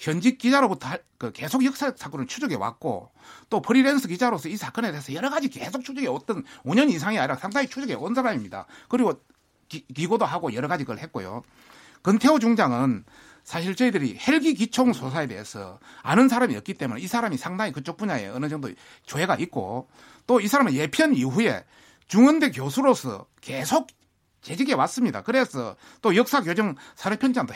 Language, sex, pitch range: Korean, male, 170-260 Hz